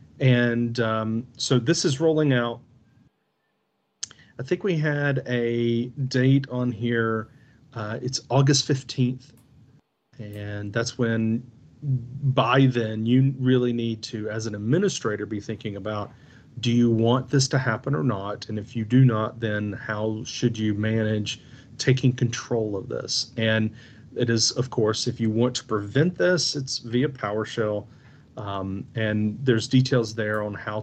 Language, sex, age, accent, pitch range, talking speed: English, male, 40-59, American, 110-130 Hz, 150 wpm